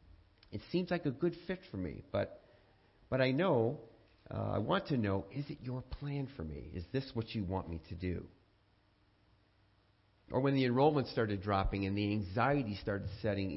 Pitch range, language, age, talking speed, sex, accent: 95-120 Hz, English, 40-59, 185 wpm, male, American